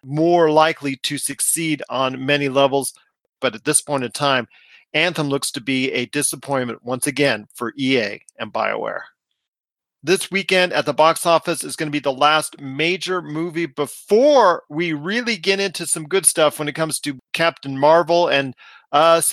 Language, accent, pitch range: English, American, 140-175 Hz